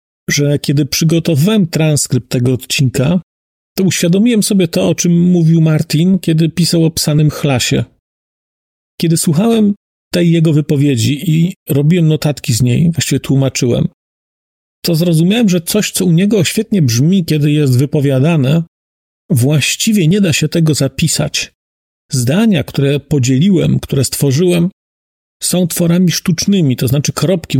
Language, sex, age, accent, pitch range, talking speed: Polish, male, 40-59, native, 135-175 Hz, 130 wpm